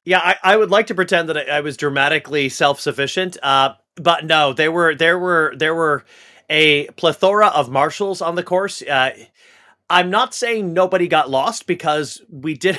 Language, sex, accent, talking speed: English, male, American, 185 wpm